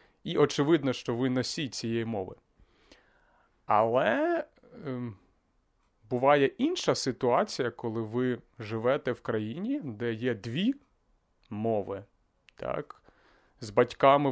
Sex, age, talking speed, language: male, 30-49, 100 wpm, Ukrainian